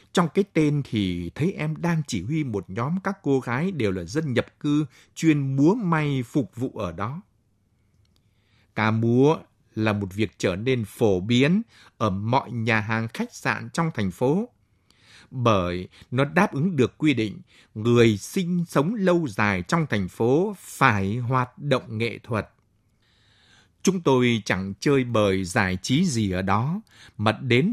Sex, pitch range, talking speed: male, 105-150 Hz, 165 wpm